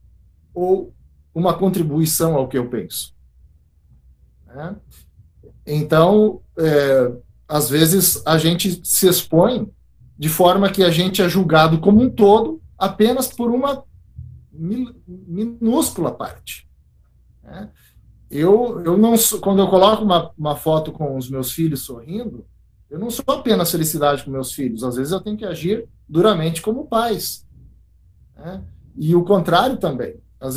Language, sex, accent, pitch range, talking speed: Portuguese, male, Brazilian, 130-200 Hz, 130 wpm